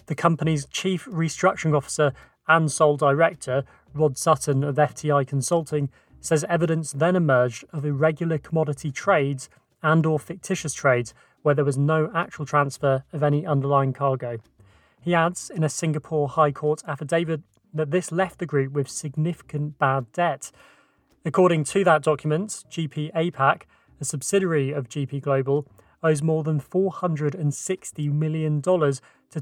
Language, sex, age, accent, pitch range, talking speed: English, male, 30-49, British, 140-165 Hz, 140 wpm